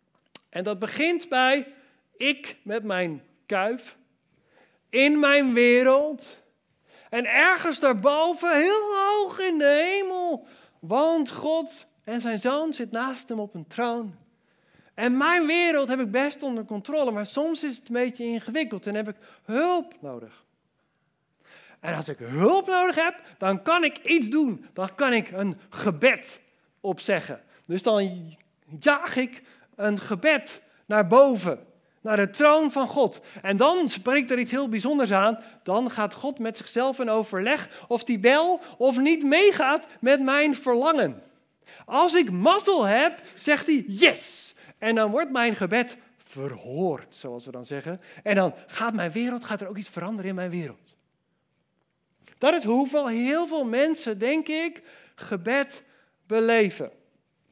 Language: Dutch